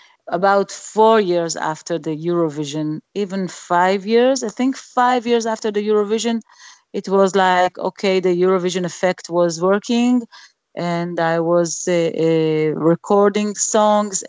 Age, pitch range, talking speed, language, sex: 40-59, 175-225 Hz, 135 wpm, English, female